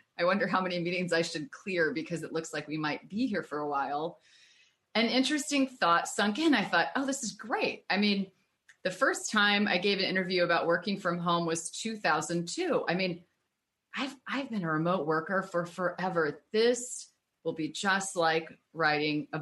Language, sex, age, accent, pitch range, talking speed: English, female, 30-49, American, 165-220 Hz, 190 wpm